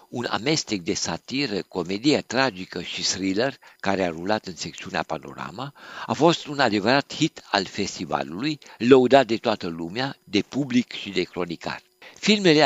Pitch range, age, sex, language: 95-135 Hz, 60-79, male, Romanian